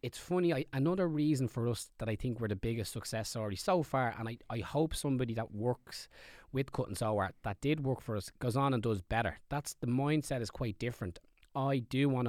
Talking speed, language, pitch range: 225 wpm, English, 105-135 Hz